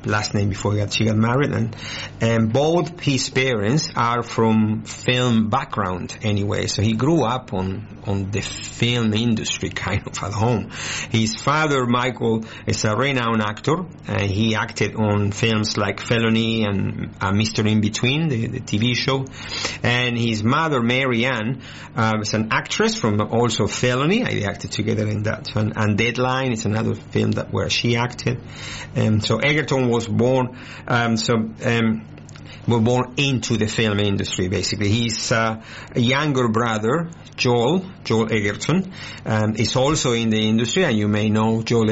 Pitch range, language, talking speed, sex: 110-125 Hz, English, 165 wpm, male